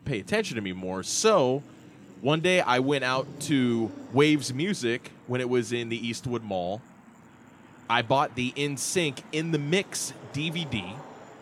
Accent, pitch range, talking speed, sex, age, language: American, 115-145 Hz, 160 wpm, male, 20-39, English